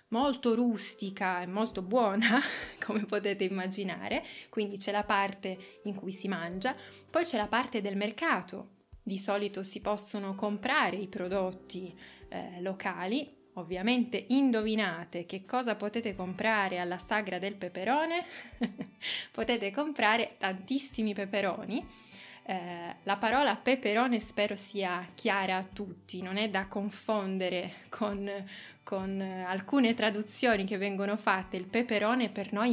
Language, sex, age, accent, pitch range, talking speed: Italian, female, 20-39, native, 190-225 Hz, 125 wpm